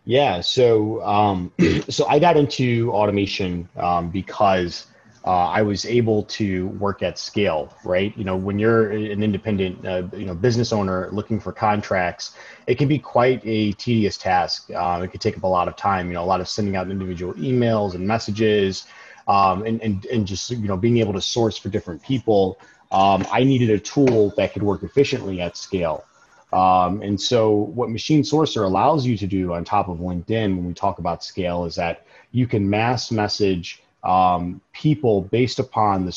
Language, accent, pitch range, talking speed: English, American, 90-115 Hz, 190 wpm